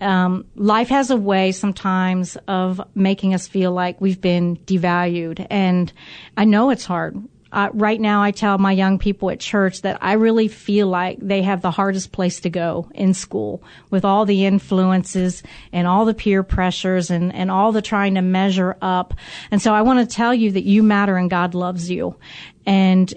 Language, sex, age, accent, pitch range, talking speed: English, female, 40-59, American, 190-225 Hz, 195 wpm